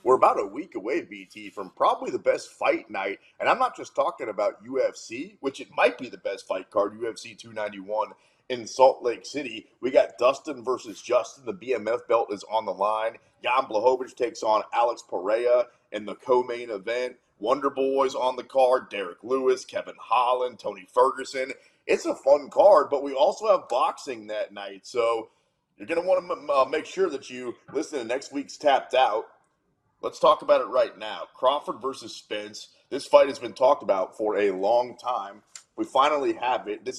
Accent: American